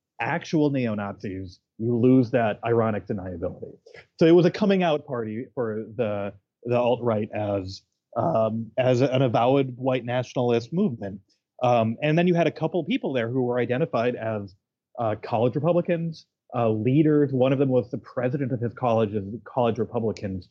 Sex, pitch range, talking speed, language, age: male, 110-135 Hz, 160 wpm, English, 30-49